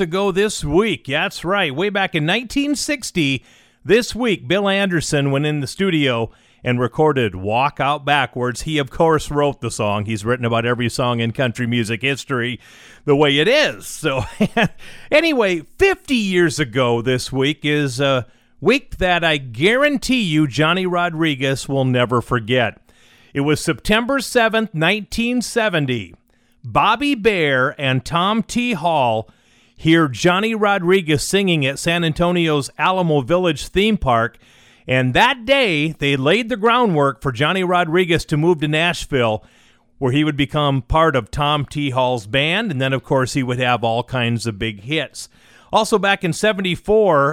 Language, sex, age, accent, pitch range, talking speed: English, male, 40-59, American, 130-180 Hz, 155 wpm